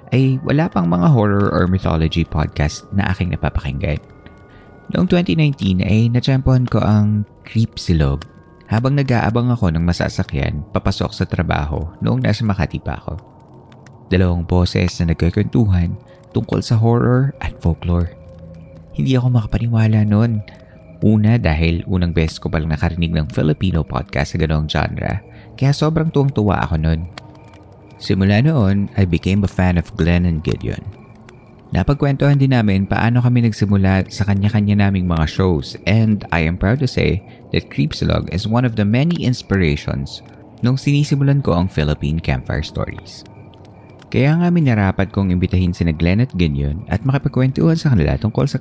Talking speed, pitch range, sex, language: 150 wpm, 85-120 Hz, male, Filipino